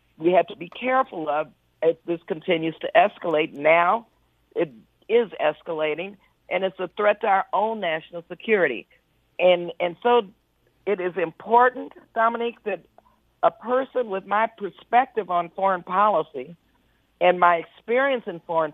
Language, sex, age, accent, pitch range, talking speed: English, female, 50-69, American, 170-220 Hz, 145 wpm